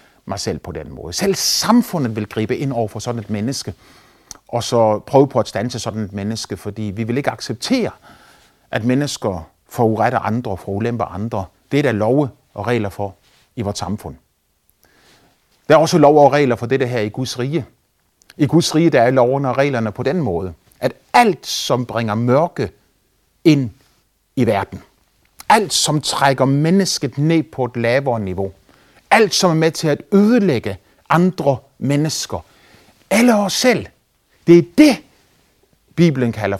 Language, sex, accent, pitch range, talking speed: Danish, male, native, 110-170 Hz, 170 wpm